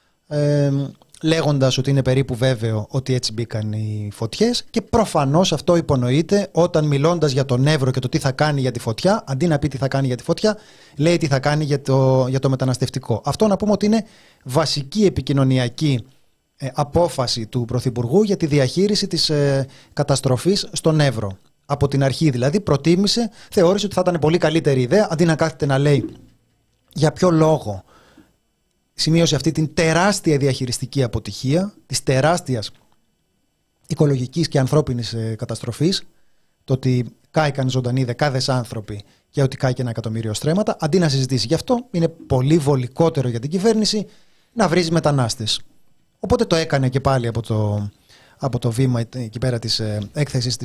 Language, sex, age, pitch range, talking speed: Greek, male, 30-49, 125-165 Hz, 160 wpm